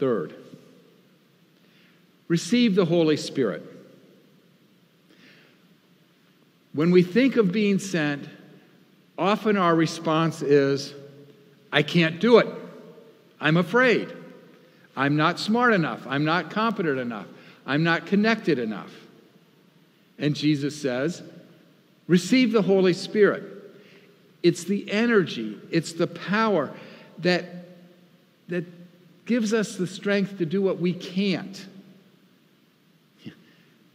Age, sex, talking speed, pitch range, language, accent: 50-69, male, 105 wpm, 150-195 Hz, English, American